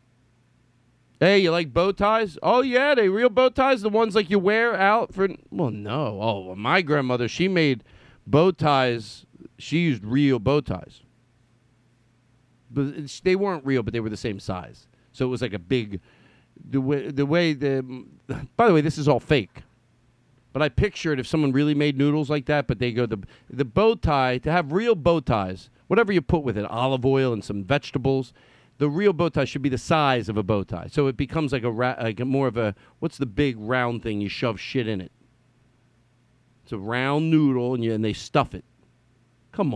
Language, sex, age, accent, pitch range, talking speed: English, male, 40-59, American, 120-165 Hz, 205 wpm